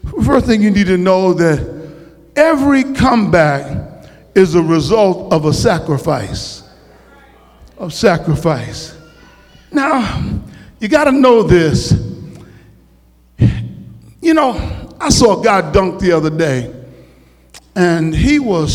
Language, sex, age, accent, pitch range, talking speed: English, male, 50-69, American, 175-290 Hz, 115 wpm